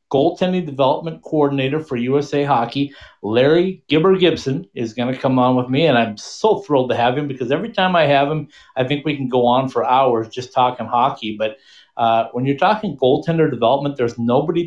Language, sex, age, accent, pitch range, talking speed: English, male, 50-69, American, 120-160 Hz, 200 wpm